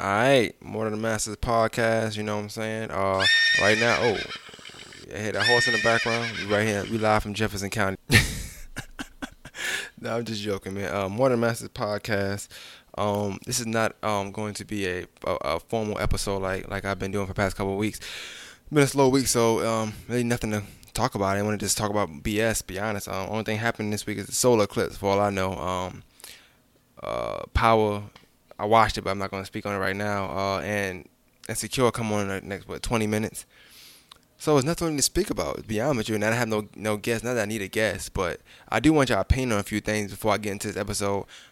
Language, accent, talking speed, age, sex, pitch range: English, American, 245 wpm, 20-39, male, 100-115 Hz